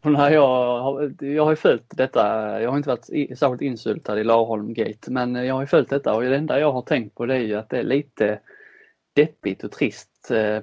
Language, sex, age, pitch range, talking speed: Swedish, male, 20-39, 115-140 Hz, 210 wpm